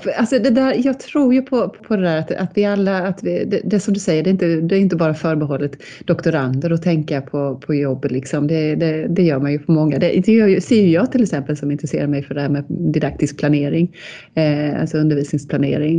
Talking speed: 235 wpm